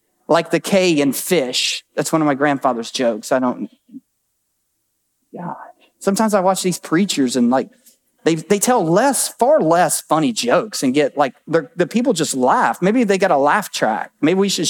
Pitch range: 180-235 Hz